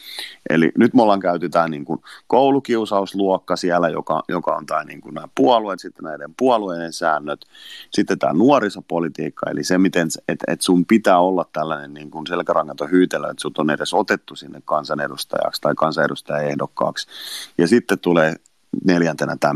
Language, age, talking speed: Finnish, 30-49, 150 wpm